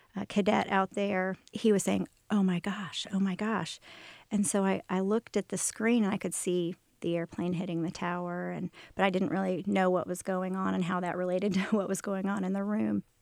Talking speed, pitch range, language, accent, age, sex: 235 wpm, 185-210 Hz, English, American, 40-59, female